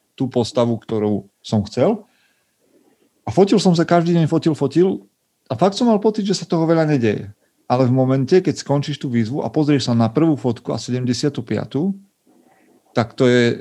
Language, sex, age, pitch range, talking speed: Slovak, male, 40-59, 115-140 Hz, 180 wpm